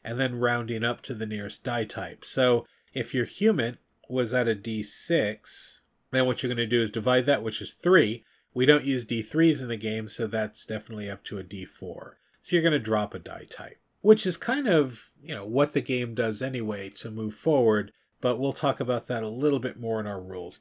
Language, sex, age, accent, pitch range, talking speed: English, male, 40-59, American, 110-155 Hz, 225 wpm